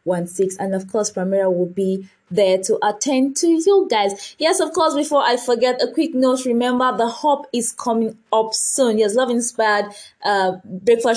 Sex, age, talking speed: female, 20-39, 175 wpm